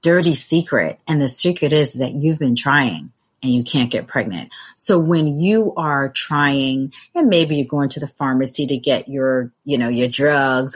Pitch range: 135-165 Hz